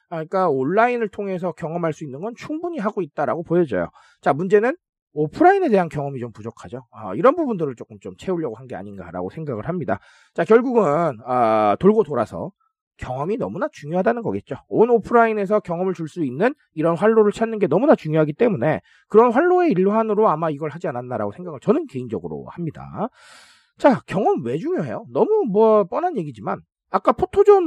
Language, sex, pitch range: Korean, male, 155-235 Hz